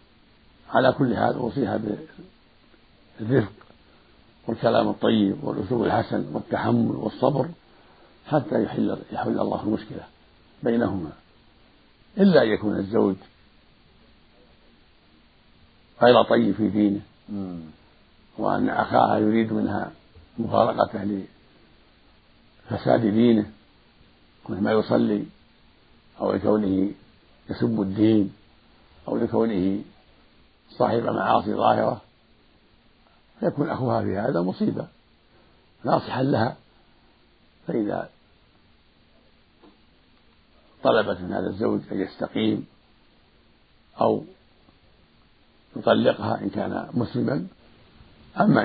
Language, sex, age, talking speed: Arabic, male, 50-69, 80 wpm